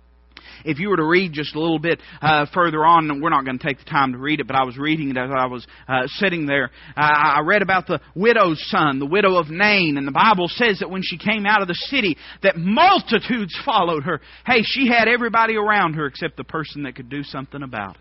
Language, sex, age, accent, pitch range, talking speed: English, male, 40-59, American, 140-220 Hz, 250 wpm